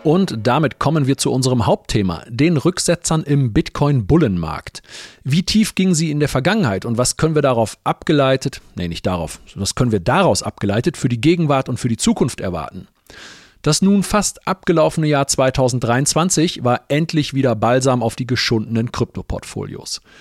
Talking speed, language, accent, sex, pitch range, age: 165 wpm, German, German, male, 110-150 Hz, 40-59